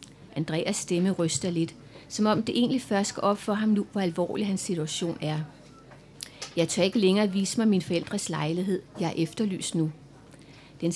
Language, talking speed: Danish, 175 wpm